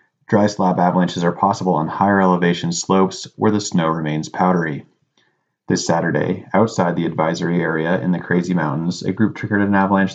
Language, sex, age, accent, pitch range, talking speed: English, male, 30-49, American, 90-100 Hz, 170 wpm